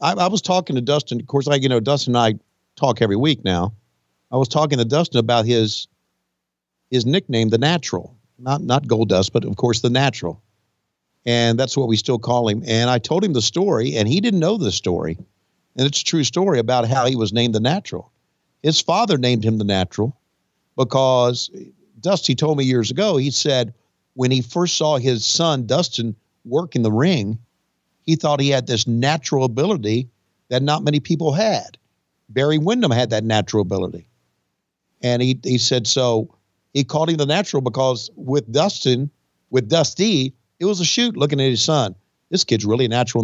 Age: 50-69